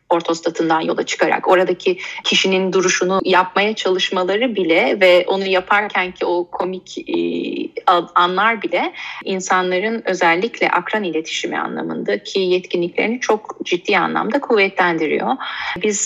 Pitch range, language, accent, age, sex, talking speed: 170-215 Hz, Turkish, native, 30-49, female, 110 wpm